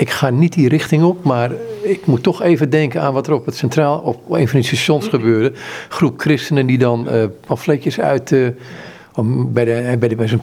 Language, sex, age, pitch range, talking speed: Dutch, male, 50-69, 115-145 Hz, 220 wpm